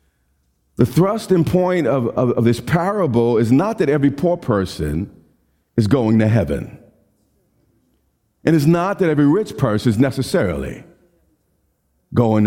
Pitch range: 115-175 Hz